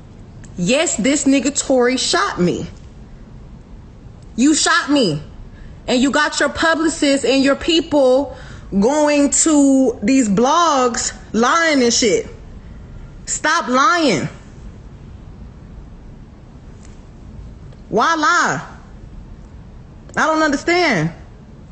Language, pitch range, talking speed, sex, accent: English, 220-315 Hz, 85 wpm, female, American